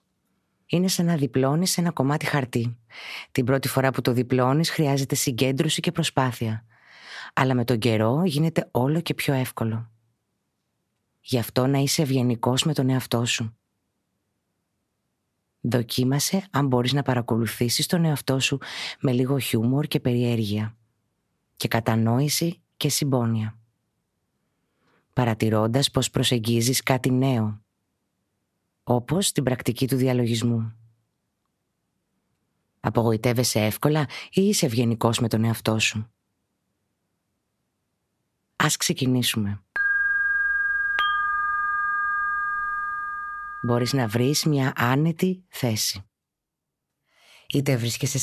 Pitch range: 115-155 Hz